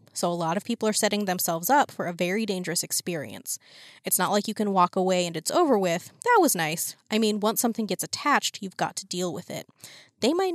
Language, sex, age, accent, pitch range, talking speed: English, female, 20-39, American, 185-230 Hz, 240 wpm